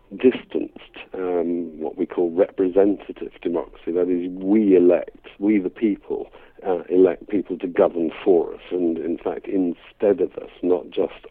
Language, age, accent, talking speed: English, 60-79, British, 155 wpm